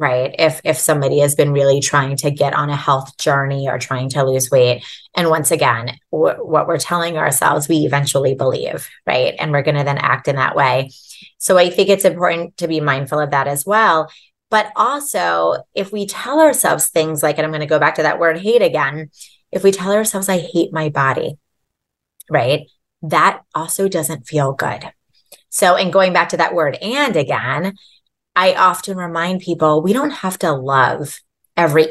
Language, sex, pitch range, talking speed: English, female, 145-205 Hz, 195 wpm